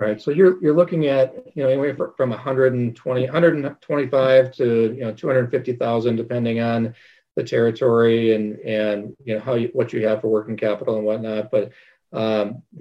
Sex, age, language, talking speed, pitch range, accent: male, 40-59, English, 165 wpm, 110-125 Hz, American